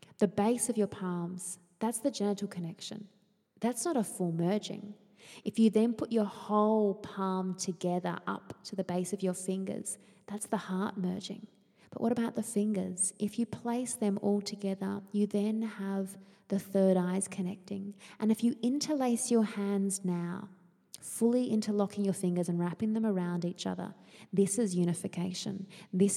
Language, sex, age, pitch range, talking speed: English, female, 20-39, 185-215 Hz, 165 wpm